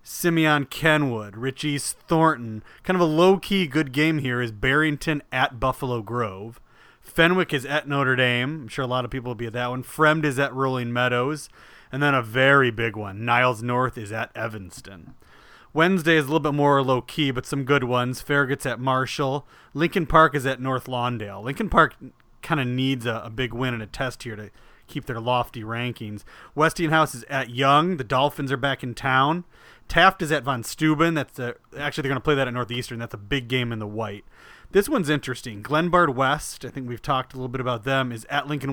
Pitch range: 120-145 Hz